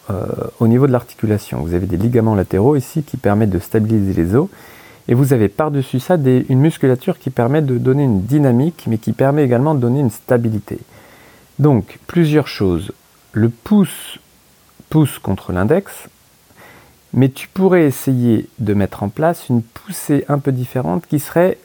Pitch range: 110-145 Hz